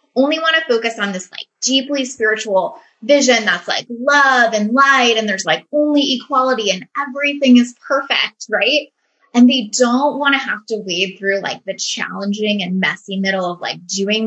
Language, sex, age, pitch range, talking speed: English, female, 20-39, 205-275 Hz, 180 wpm